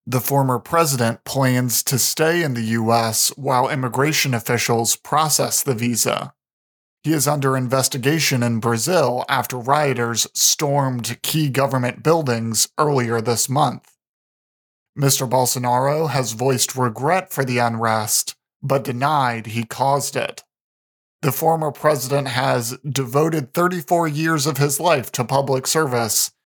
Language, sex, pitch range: English, male, 120-145 Hz